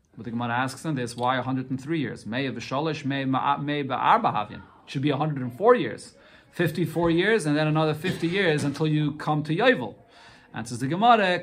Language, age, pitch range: English, 30-49, 135-175 Hz